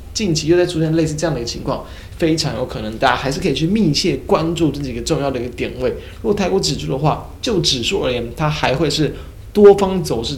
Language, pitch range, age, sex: Chinese, 115-155 Hz, 20-39, male